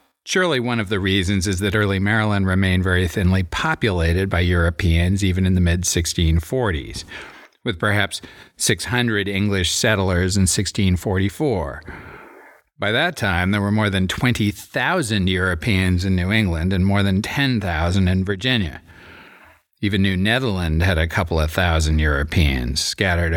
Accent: American